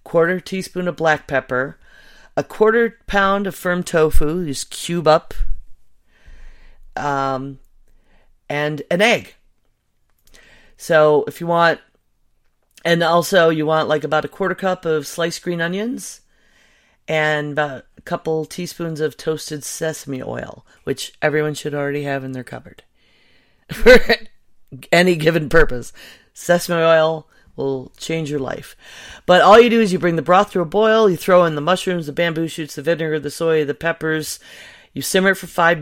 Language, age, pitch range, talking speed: English, 40-59, 150-180 Hz, 155 wpm